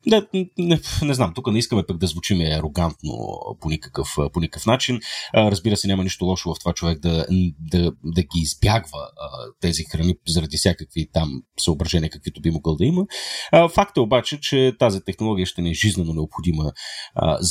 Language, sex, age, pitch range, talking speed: Bulgarian, male, 30-49, 85-125 Hz, 190 wpm